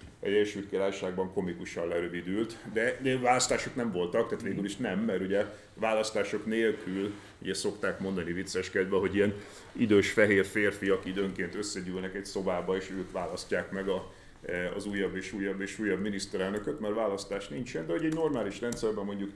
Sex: male